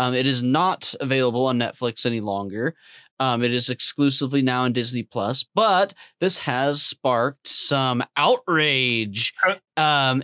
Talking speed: 140 wpm